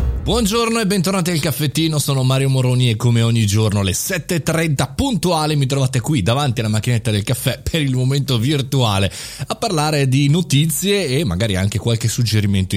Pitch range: 105-145 Hz